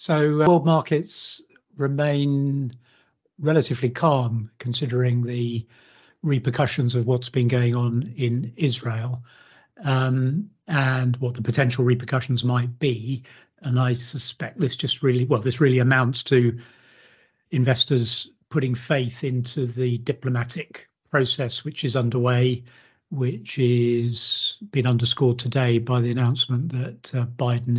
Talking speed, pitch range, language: 120 wpm, 120-135 Hz, English